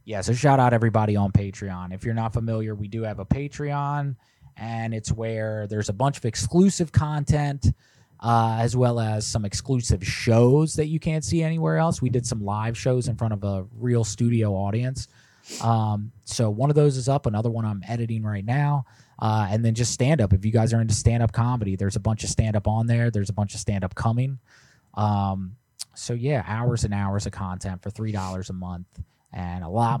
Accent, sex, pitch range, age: American, male, 100-120 Hz, 20-39